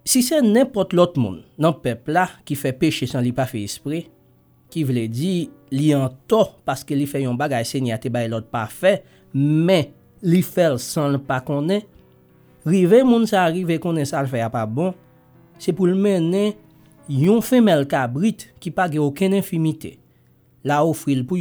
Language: English